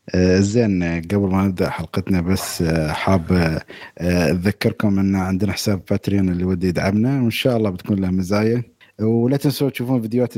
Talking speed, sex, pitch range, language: 160 wpm, male, 90-115 Hz, Arabic